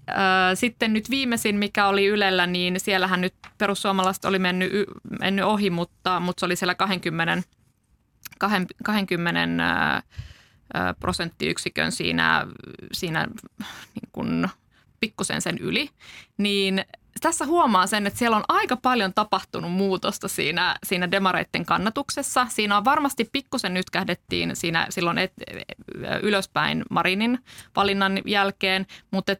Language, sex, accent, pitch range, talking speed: Finnish, female, native, 175-205 Hz, 115 wpm